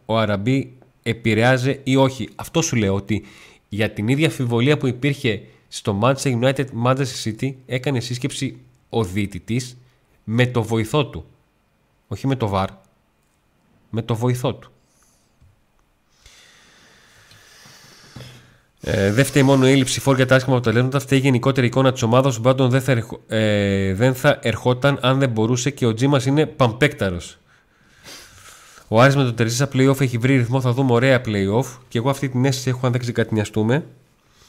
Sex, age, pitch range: male, 30-49, 115-135 Hz